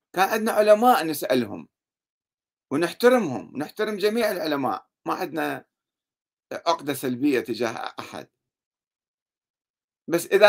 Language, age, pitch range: Arabic, 50-69, 125-170 Hz